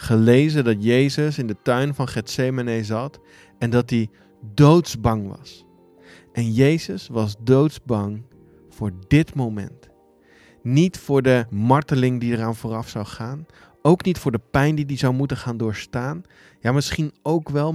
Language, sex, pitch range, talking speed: Dutch, male, 110-145 Hz, 150 wpm